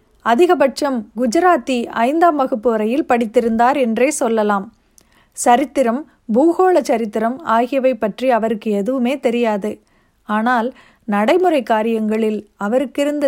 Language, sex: Tamil, female